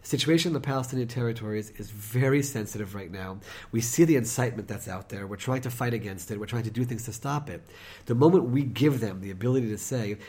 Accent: American